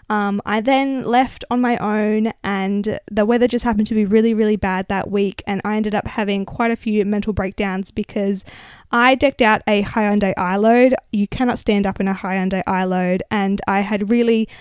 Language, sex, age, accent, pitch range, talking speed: English, female, 10-29, Australian, 195-220 Hz, 195 wpm